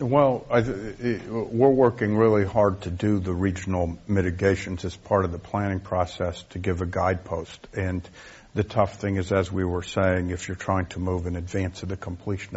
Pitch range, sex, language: 95-110 Hz, male, English